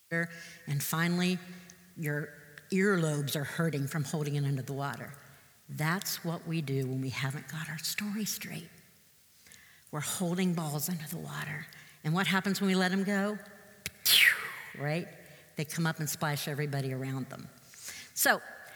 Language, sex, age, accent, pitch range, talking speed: English, female, 60-79, American, 145-185 Hz, 150 wpm